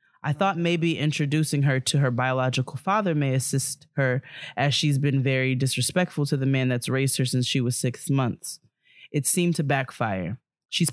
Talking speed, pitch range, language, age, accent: 180 wpm, 125-145 Hz, English, 20-39, American